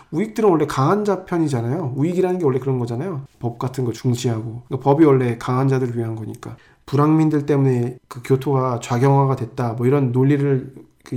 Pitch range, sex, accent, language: 125-155 Hz, male, native, Korean